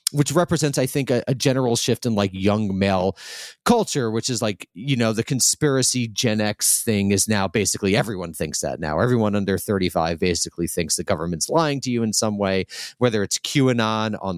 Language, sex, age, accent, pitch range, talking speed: English, male, 30-49, American, 95-130 Hz, 195 wpm